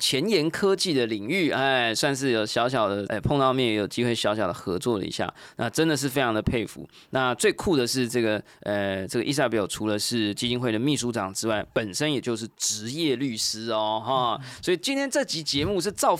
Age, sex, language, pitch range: 20-39, male, Chinese, 110-140 Hz